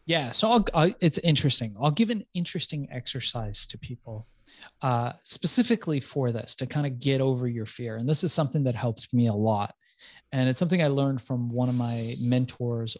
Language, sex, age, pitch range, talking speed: English, male, 30-49, 120-175 Hz, 190 wpm